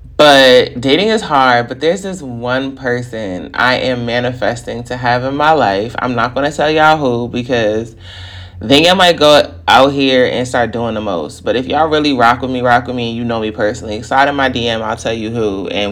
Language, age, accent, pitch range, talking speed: English, 20-39, American, 110-135 Hz, 220 wpm